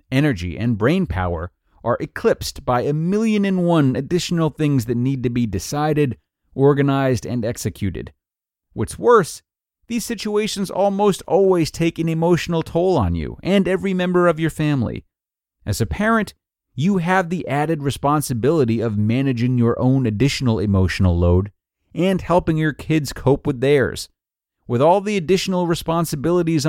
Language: English